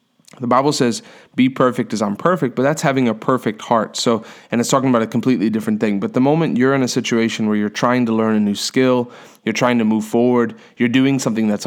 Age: 30-49